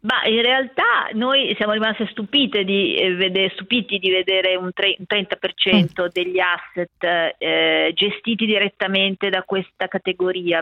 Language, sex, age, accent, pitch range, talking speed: Italian, female, 40-59, native, 180-210 Hz, 125 wpm